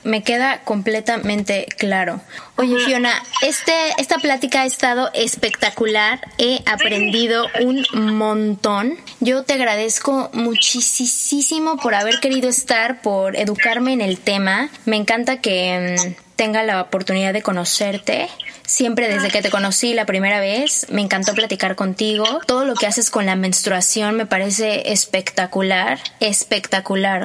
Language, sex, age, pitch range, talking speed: Spanish, female, 20-39, 205-250 Hz, 130 wpm